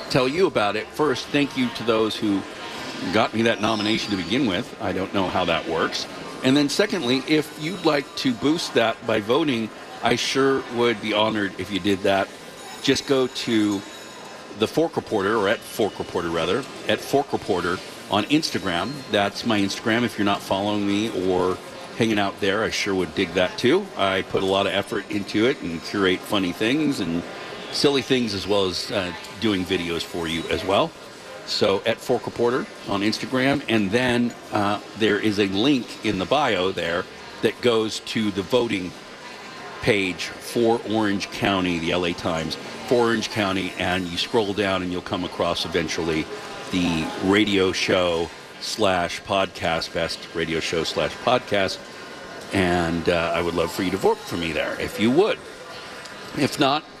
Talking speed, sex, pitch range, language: 180 wpm, male, 95-125 Hz, English